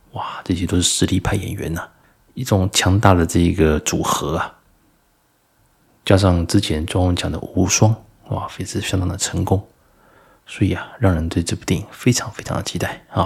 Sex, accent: male, native